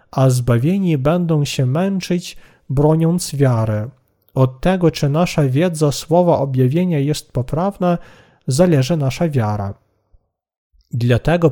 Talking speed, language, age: 105 wpm, Polish, 40-59